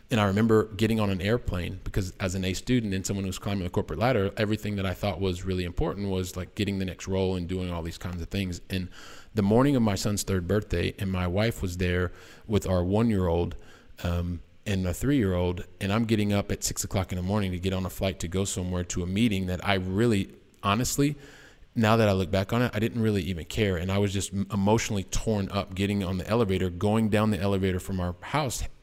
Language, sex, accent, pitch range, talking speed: English, male, American, 95-110 Hz, 235 wpm